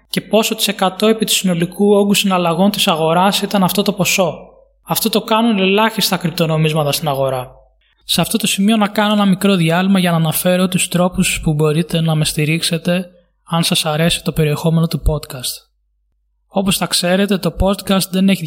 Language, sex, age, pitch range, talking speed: Greek, male, 20-39, 160-195 Hz, 180 wpm